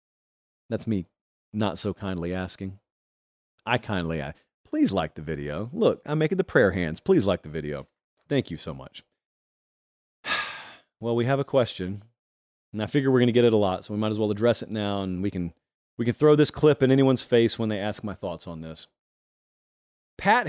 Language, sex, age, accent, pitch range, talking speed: English, male, 40-59, American, 95-140 Hz, 200 wpm